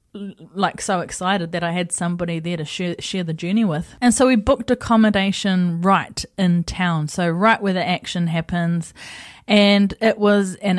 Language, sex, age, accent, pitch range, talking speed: English, female, 30-49, Australian, 175-225 Hz, 180 wpm